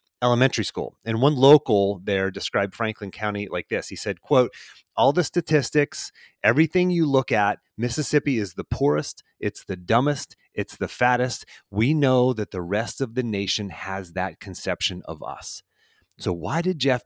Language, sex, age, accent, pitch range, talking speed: English, male, 30-49, American, 110-165 Hz, 170 wpm